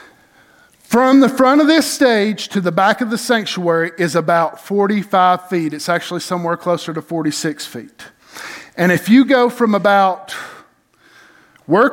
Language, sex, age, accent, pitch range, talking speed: English, male, 50-69, American, 180-250 Hz, 150 wpm